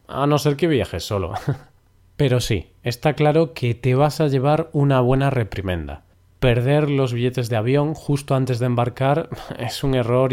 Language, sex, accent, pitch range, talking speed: Spanish, male, Spanish, 100-140 Hz, 175 wpm